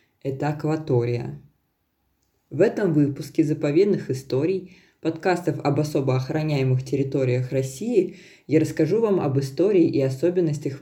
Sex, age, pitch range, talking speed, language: female, 20-39, 135-160 Hz, 110 wpm, Russian